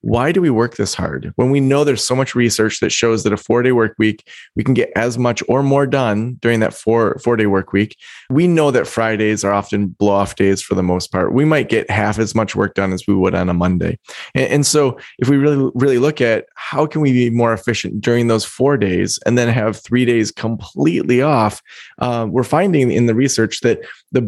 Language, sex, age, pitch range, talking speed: English, male, 20-39, 105-130 Hz, 235 wpm